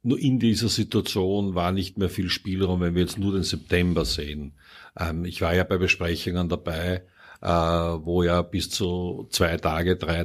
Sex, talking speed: male, 170 wpm